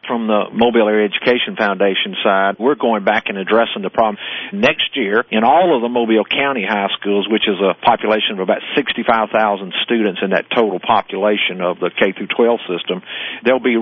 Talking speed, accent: 185 wpm, American